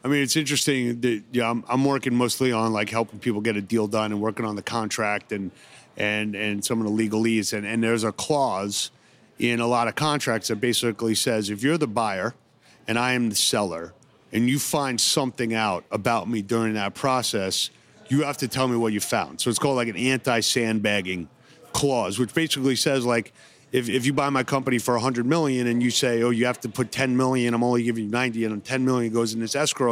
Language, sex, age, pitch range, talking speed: English, male, 30-49, 110-130 Hz, 225 wpm